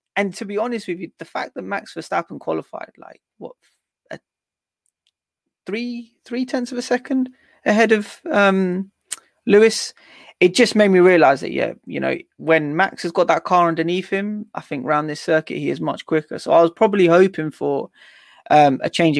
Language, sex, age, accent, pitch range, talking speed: English, male, 20-39, British, 150-205 Hz, 190 wpm